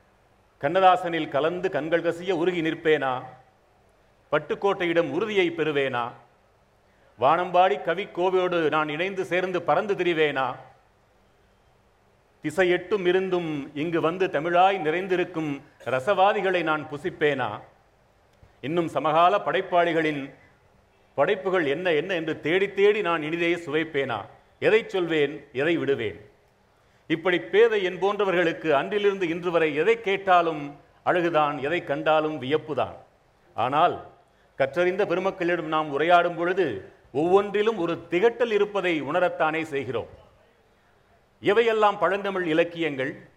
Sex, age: male, 40-59